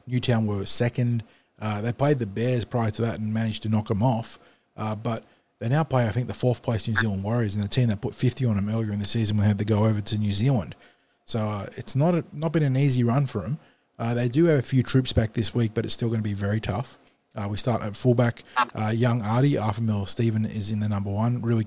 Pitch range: 105-120 Hz